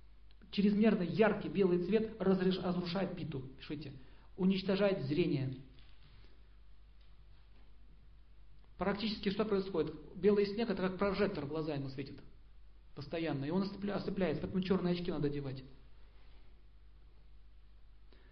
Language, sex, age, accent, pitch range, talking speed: Russian, male, 40-59, native, 145-190 Hz, 100 wpm